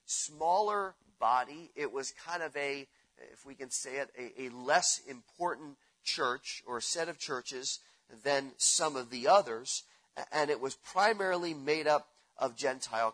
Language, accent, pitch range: English, American, 135-185 Hz